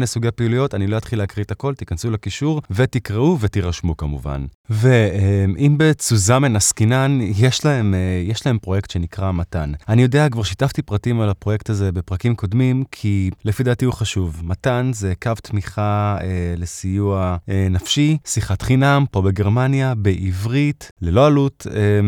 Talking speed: 135 wpm